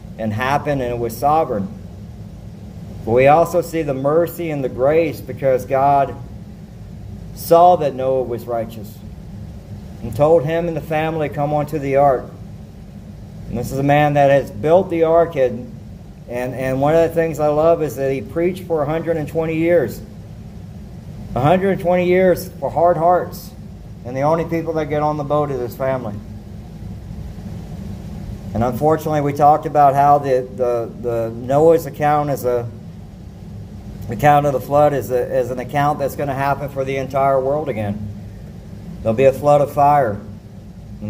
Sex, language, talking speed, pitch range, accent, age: male, English, 165 wpm, 110-150 Hz, American, 50-69